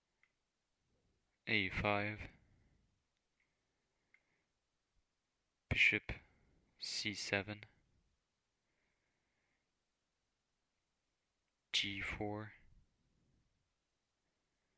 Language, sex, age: English, male, 30-49